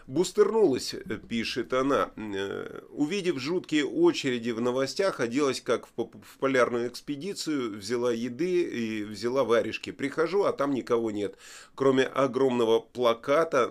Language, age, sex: Russian, 30-49, male